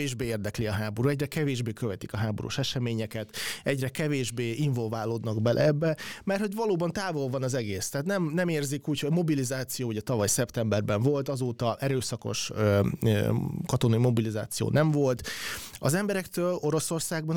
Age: 30-49